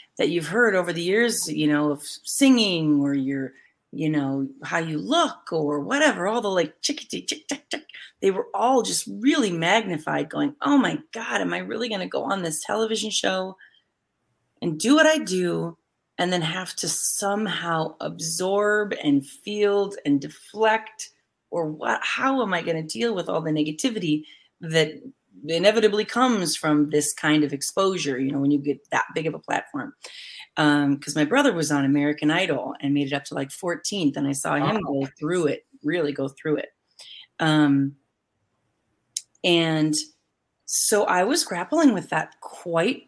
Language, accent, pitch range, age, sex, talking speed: English, American, 150-220 Hz, 30-49, female, 175 wpm